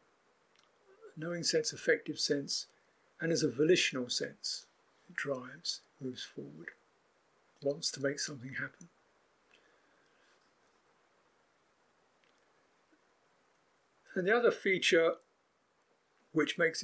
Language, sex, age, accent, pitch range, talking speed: English, male, 50-69, British, 130-185 Hz, 85 wpm